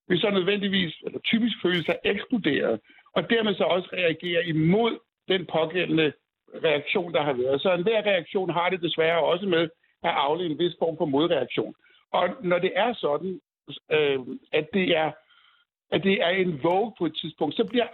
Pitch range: 170-225 Hz